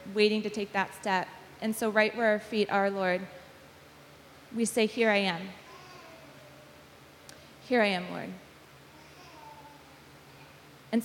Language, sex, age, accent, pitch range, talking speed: English, female, 20-39, American, 190-215 Hz, 125 wpm